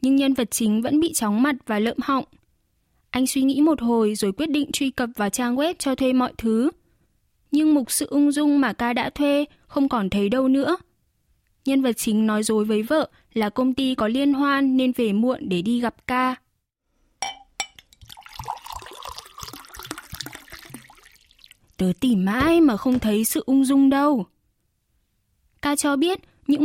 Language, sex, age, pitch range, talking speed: Vietnamese, female, 10-29, 225-295 Hz, 170 wpm